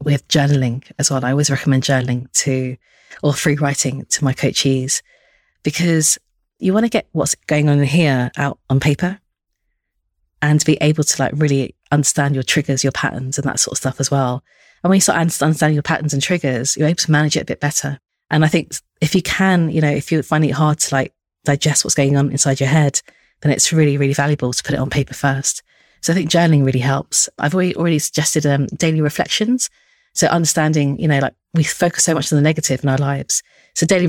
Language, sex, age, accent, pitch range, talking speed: English, female, 30-49, British, 140-160 Hz, 220 wpm